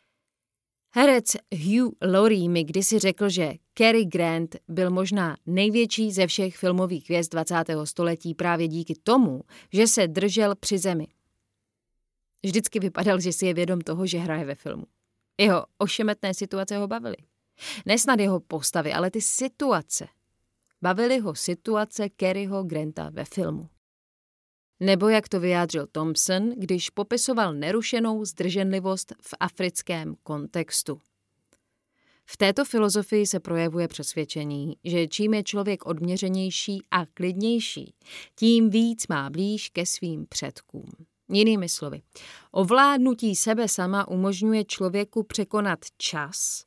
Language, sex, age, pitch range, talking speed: Czech, female, 30-49, 170-210 Hz, 125 wpm